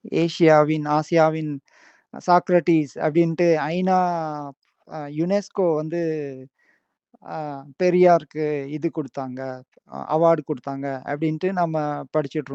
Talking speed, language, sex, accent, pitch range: 70 wpm, Tamil, male, native, 155-180 Hz